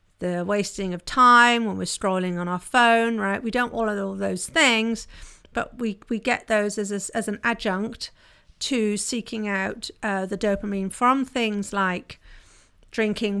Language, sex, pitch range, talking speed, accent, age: English, female, 200-250 Hz, 170 wpm, British, 50-69